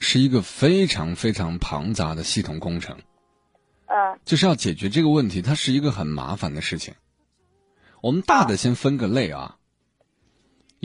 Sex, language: male, Chinese